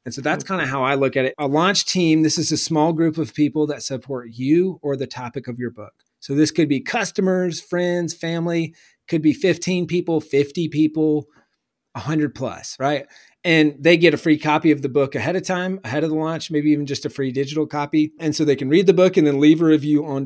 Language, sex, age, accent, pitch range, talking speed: English, male, 30-49, American, 135-160 Hz, 240 wpm